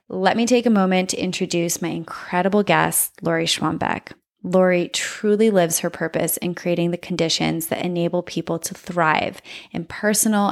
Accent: American